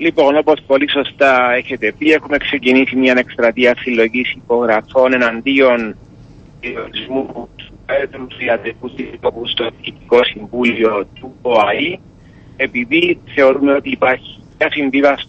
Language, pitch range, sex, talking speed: Greek, 125-150 Hz, male, 110 wpm